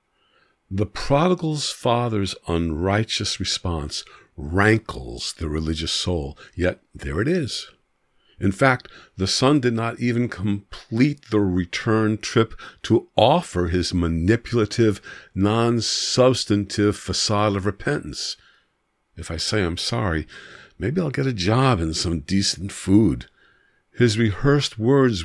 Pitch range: 85-110 Hz